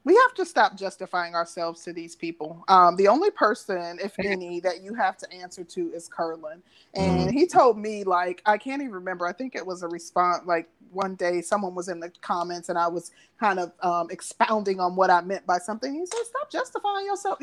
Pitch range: 180-215 Hz